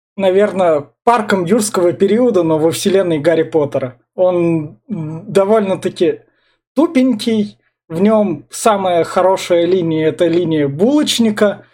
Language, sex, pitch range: Russian, male, 165-215 Hz